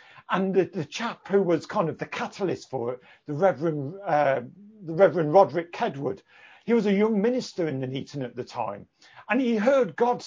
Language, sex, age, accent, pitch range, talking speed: English, male, 50-69, British, 165-240 Hz, 200 wpm